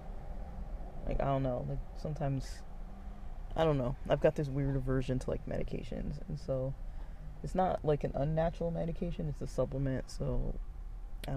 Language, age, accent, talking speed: English, 20-39, American, 160 wpm